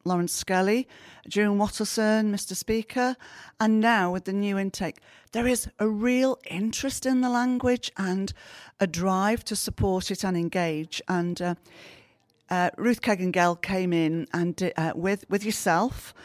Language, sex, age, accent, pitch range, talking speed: English, female, 40-59, British, 175-215 Hz, 150 wpm